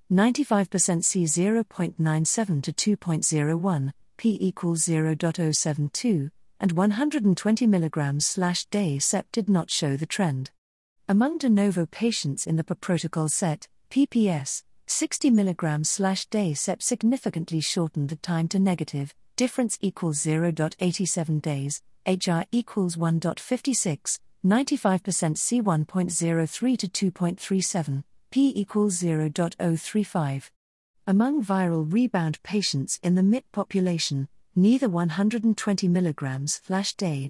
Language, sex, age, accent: English, female, 40-59, British